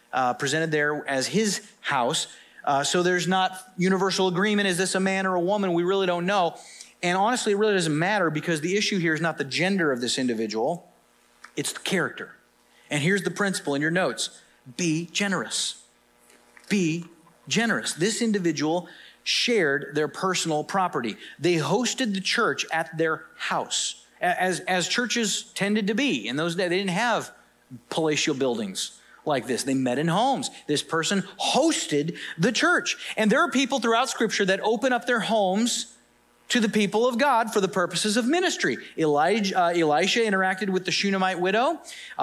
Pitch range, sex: 165-225 Hz, male